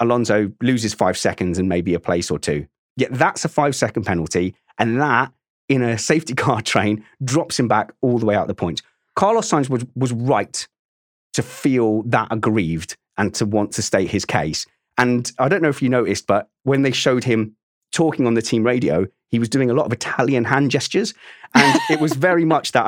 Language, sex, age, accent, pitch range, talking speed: English, male, 30-49, British, 115-150 Hz, 210 wpm